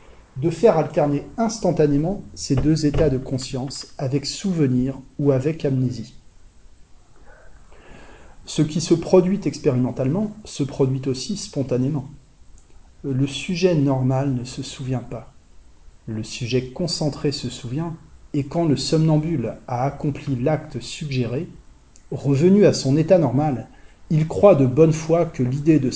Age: 40-59